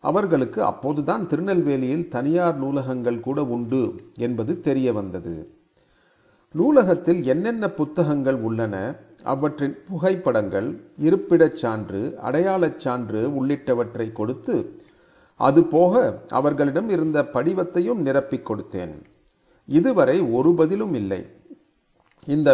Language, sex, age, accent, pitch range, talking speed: Tamil, male, 40-59, native, 125-170 Hz, 85 wpm